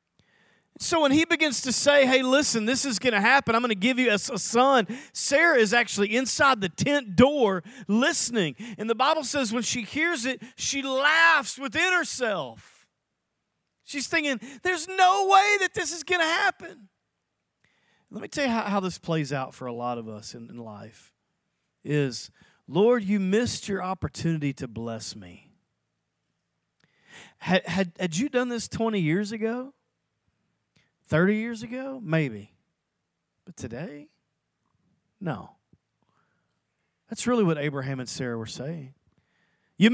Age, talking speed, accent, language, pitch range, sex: 40-59, 155 wpm, American, English, 190-275 Hz, male